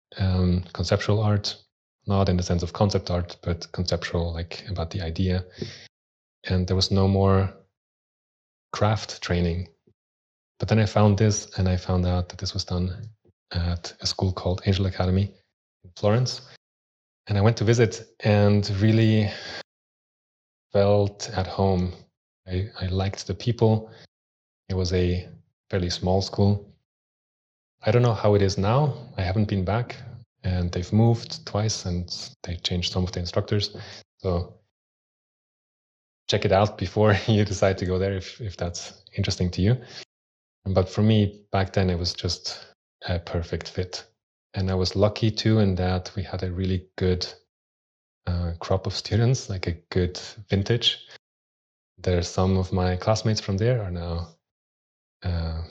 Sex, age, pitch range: male, 30-49, 90-105 Hz